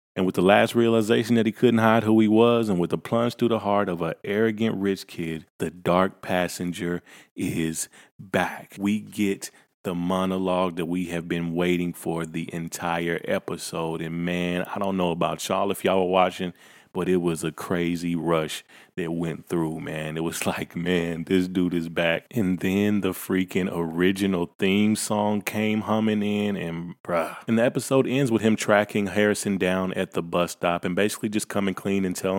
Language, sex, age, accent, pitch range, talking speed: English, male, 30-49, American, 85-105 Hz, 190 wpm